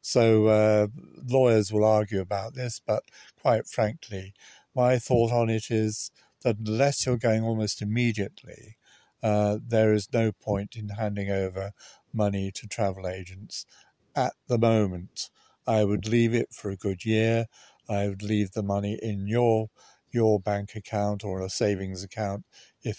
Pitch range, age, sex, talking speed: 100-115 Hz, 60-79, male, 155 wpm